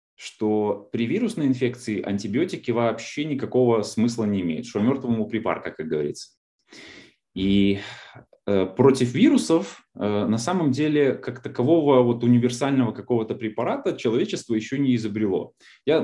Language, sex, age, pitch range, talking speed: Russian, male, 20-39, 105-130 Hz, 125 wpm